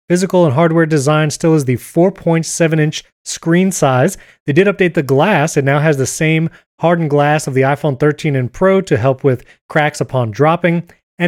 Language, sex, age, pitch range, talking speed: English, male, 30-49, 145-185 Hz, 185 wpm